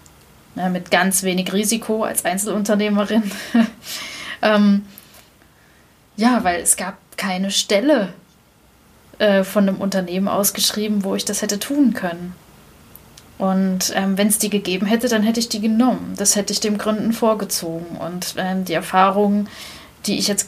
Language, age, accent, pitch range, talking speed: German, 10-29, German, 190-220 Hz, 145 wpm